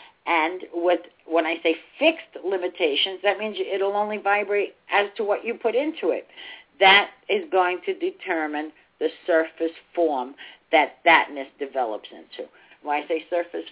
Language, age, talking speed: English, 50-69, 155 wpm